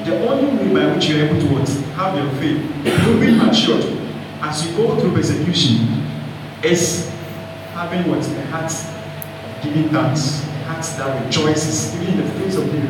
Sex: male